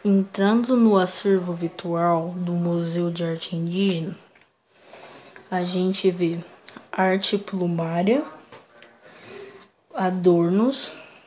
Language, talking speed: Portuguese, 80 wpm